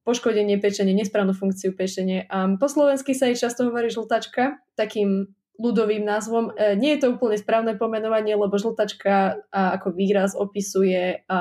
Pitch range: 190-220 Hz